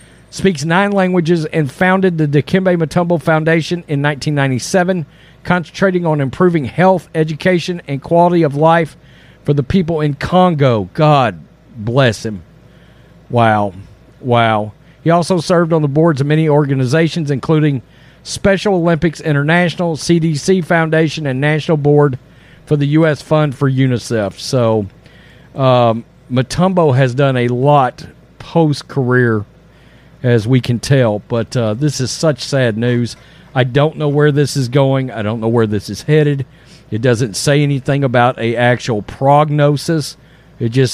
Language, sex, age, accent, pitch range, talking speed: English, male, 50-69, American, 120-160 Hz, 140 wpm